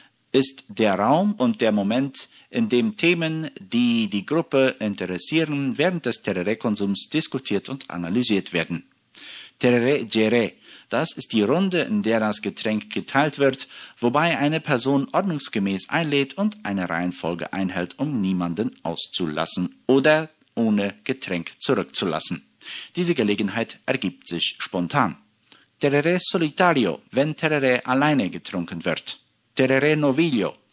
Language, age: German, 50-69